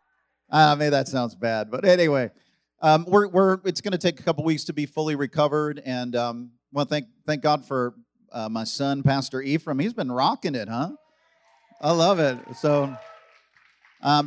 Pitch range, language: 125-165 Hz, English